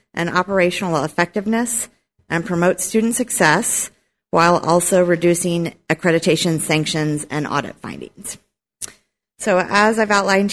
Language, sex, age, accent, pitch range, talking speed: English, female, 40-59, American, 160-185 Hz, 110 wpm